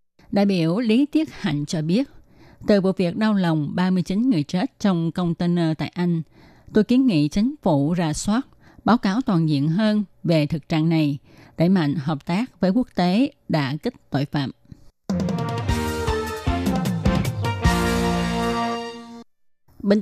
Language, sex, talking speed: Vietnamese, female, 140 wpm